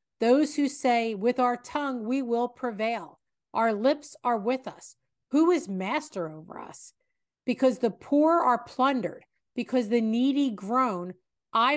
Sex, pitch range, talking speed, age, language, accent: female, 190-260 Hz, 150 wpm, 50-69, English, American